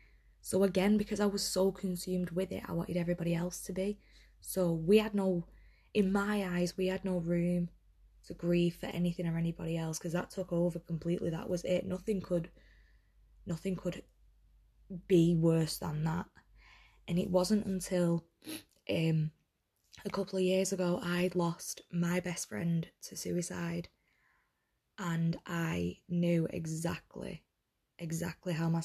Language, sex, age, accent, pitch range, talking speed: English, female, 20-39, British, 170-190 Hz, 150 wpm